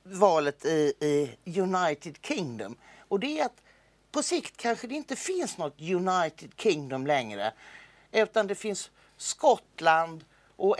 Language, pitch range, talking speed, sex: English, 155-215 Hz, 135 wpm, male